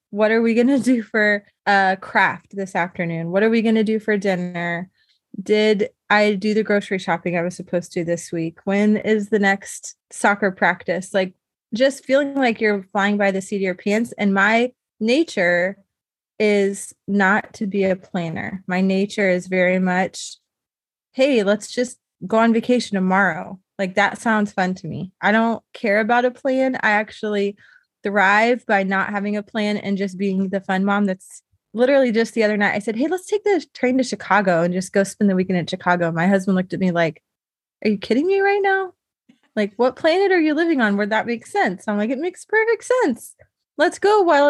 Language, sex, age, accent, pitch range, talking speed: English, female, 20-39, American, 195-250 Hz, 205 wpm